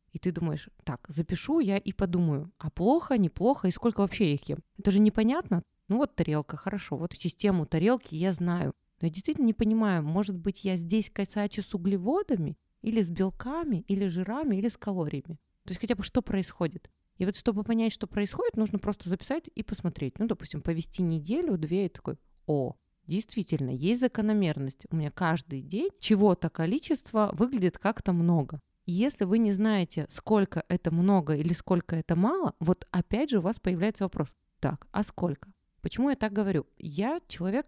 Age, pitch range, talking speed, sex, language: 20-39, 165-215 Hz, 180 wpm, female, Russian